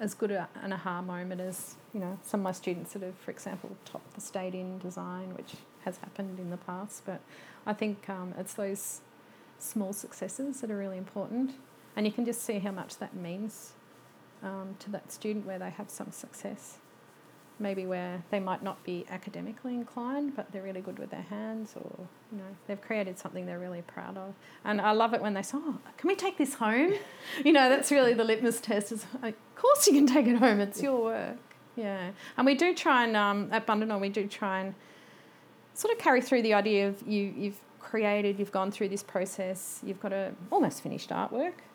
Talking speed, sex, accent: 210 wpm, female, Australian